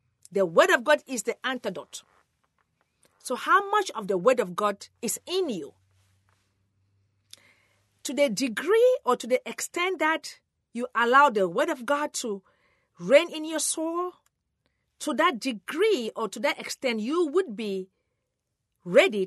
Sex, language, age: female, English, 40-59